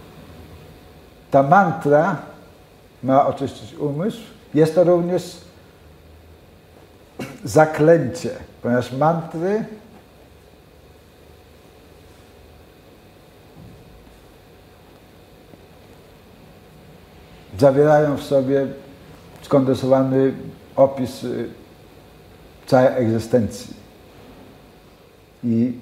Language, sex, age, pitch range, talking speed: Polish, male, 60-79, 115-140 Hz, 45 wpm